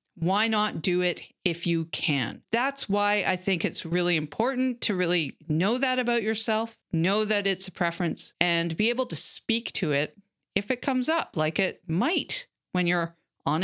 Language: English